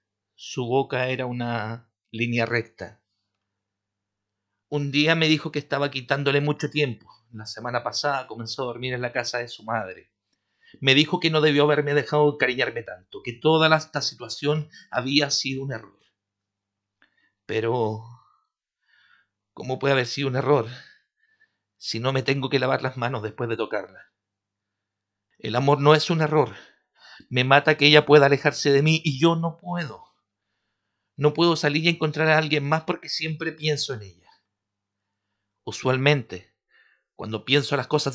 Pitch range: 110-150 Hz